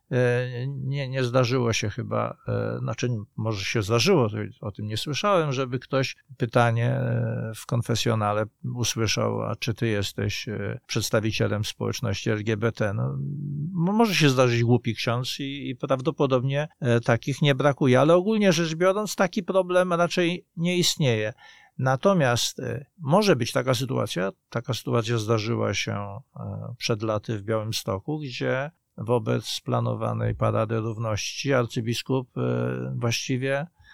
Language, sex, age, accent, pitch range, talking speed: Polish, male, 50-69, native, 115-145 Hz, 120 wpm